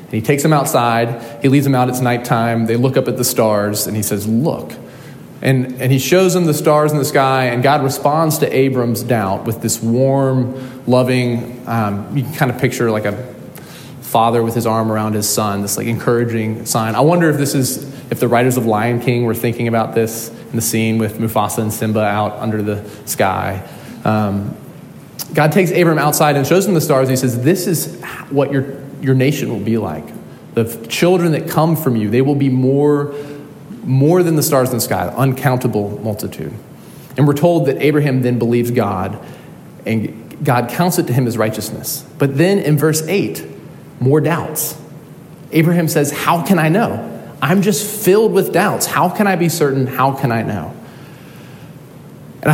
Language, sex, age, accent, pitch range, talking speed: English, male, 20-39, American, 115-150 Hz, 195 wpm